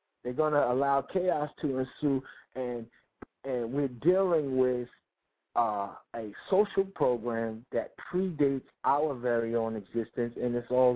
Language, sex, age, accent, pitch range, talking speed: English, male, 50-69, American, 120-145 Hz, 130 wpm